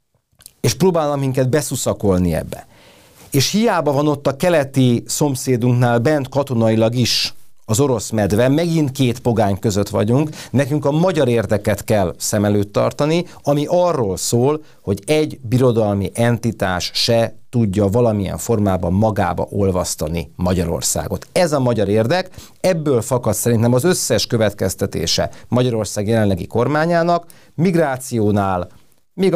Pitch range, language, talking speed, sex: 105-145 Hz, Hungarian, 125 wpm, male